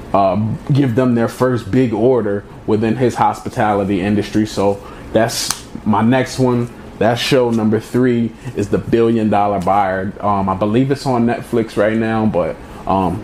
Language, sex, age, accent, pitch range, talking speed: English, male, 20-39, American, 105-120 Hz, 160 wpm